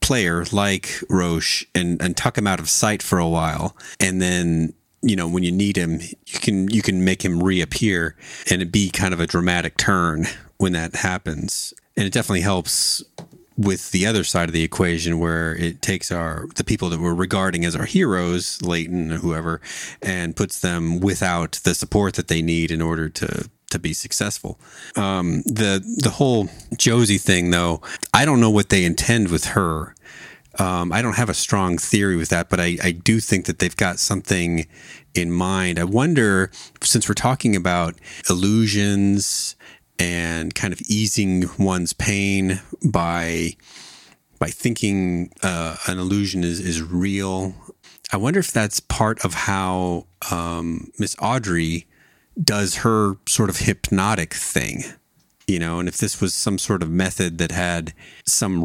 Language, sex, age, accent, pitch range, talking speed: English, male, 30-49, American, 85-100 Hz, 170 wpm